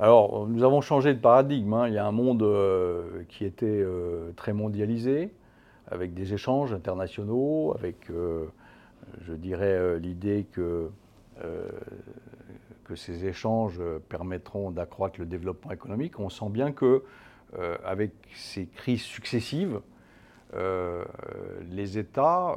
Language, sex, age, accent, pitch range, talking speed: French, male, 50-69, French, 90-120 Hz, 135 wpm